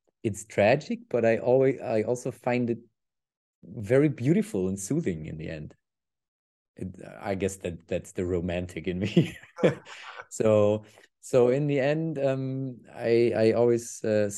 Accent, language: German, English